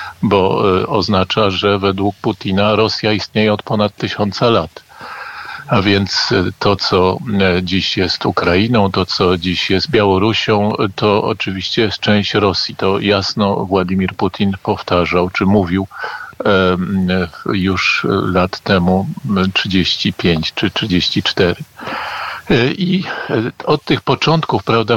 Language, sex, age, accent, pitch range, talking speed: Polish, male, 50-69, native, 95-110 Hz, 110 wpm